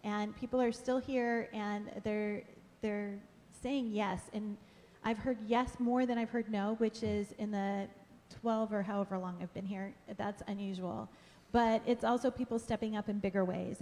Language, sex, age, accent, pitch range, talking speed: English, female, 30-49, American, 200-235 Hz, 180 wpm